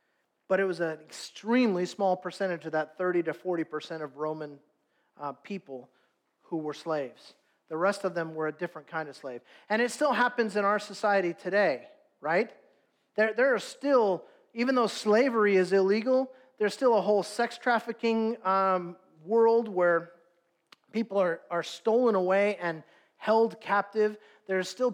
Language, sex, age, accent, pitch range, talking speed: English, male, 40-59, American, 175-220 Hz, 160 wpm